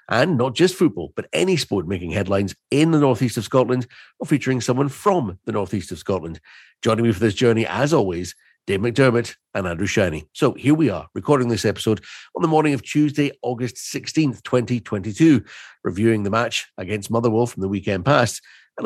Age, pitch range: 50-69, 105-130 Hz